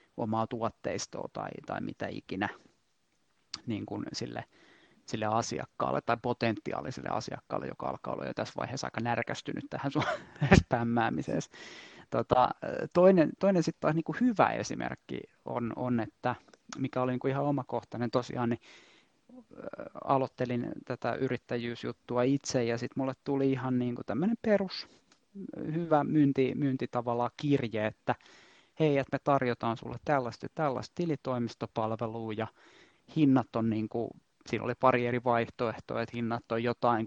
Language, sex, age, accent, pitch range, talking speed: Finnish, male, 30-49, native, 115-140 Hz, 130 wpm